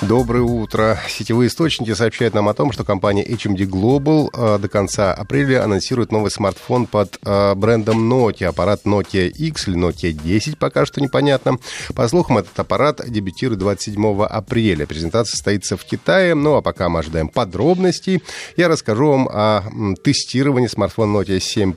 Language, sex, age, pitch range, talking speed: Russian, male, 30-49, 100-130 Hz, 150 wpm